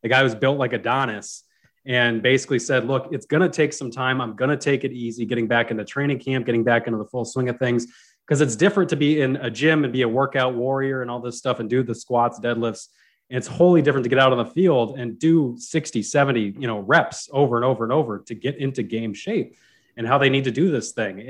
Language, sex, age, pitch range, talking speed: English, male, 30-49, 120-145 Hz, 255 wpm